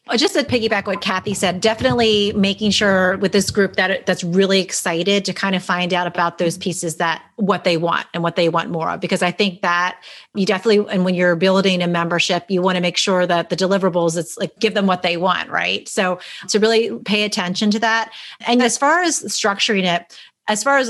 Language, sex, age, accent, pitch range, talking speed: English, female, 30-49, American, 180-210 Hz, 225 wpm